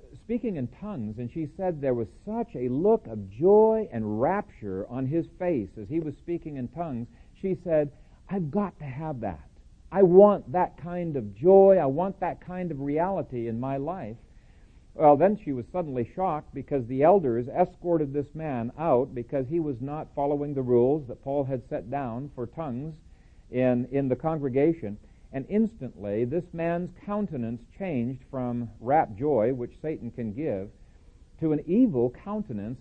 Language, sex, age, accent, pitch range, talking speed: English, male, 50-69, American, 125-185 Hz, 170 wpm